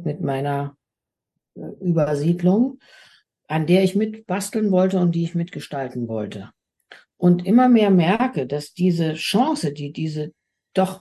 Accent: German